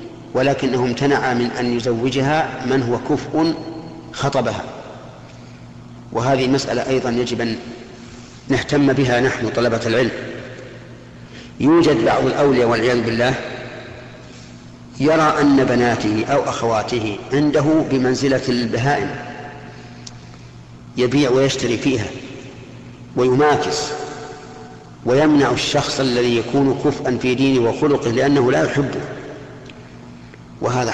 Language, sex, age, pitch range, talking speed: Arabic, male, 50-69, 115-135 Hz, 95 wpm